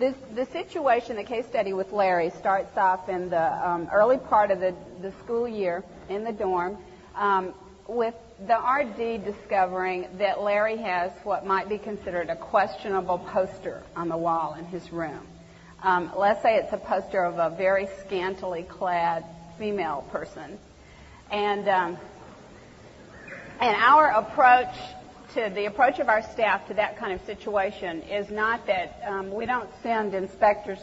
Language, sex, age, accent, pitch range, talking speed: English, female, 50-69, American, 180-210 Hz, 155 wpm